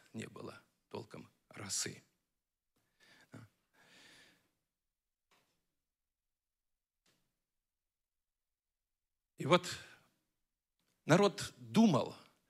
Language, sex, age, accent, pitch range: Russian, male, 50-69, native, 125-185 Hz